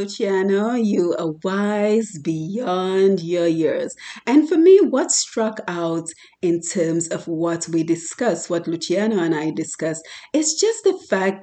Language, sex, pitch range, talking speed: English, female, 180-245 Hz, 145 wpm